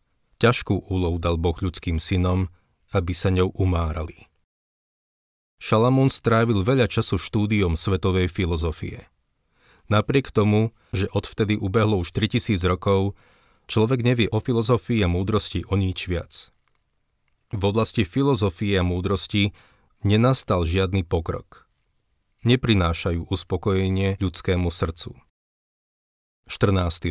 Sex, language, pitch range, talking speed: male, Slovak, 90-110 Hz, 105 wpm